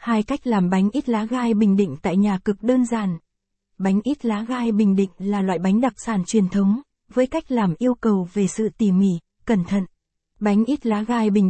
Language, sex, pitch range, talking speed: Vietnamese, female, 195-235 Hz, 225 wpm